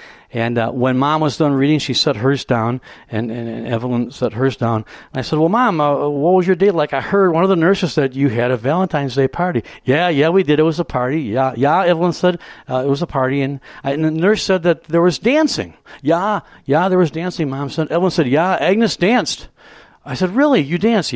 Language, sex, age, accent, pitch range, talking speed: English, male, 60-79, American, 125-180 Hz, 245 wpm